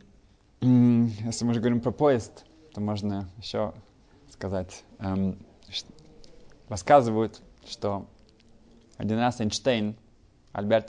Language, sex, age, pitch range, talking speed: Russian, male, 20-39, 100-120 Hz, 95 wpm